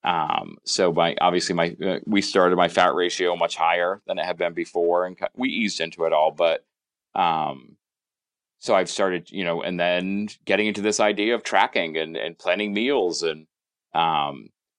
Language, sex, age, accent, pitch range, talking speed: English, male, 30-49, American, 85-100 Hz, 180 wpm